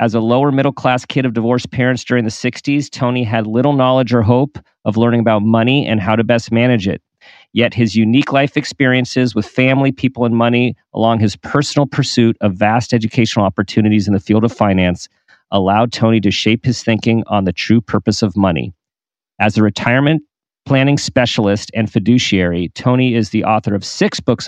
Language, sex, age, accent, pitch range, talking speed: English, male, 40-59, American, 105-125 Hz, 185 wpm